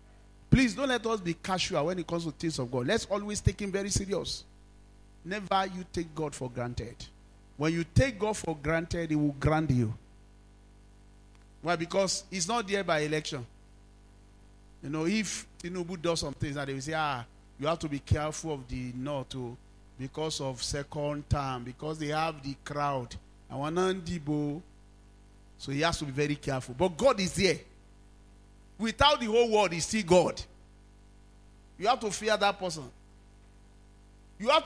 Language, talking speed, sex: English, 175 wpm, male